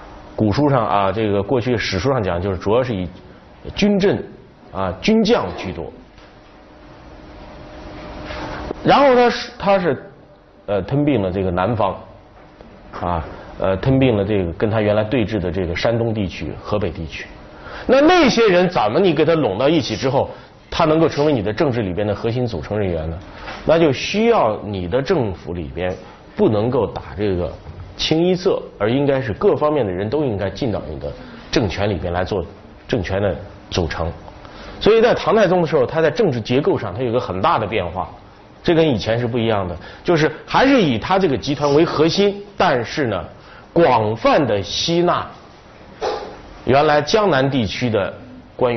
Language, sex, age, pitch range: Chinese, male, 30-49, 95-155 Hz